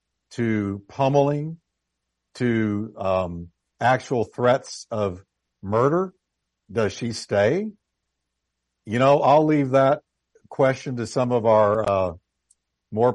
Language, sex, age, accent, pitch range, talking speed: English, male, 60-79, American, 95-135 Hz, 105 wpm